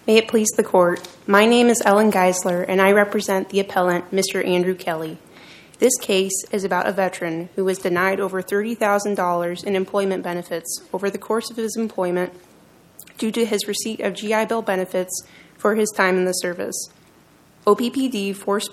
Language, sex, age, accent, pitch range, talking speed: English, female, 20-39, American, 180-210 Hz, 175 wpm